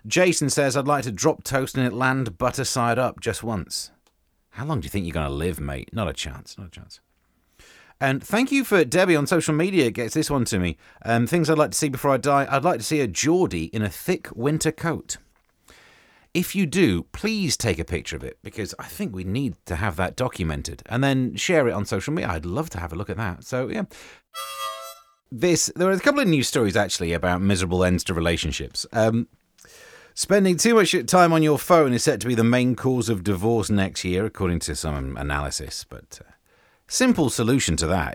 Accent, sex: British, male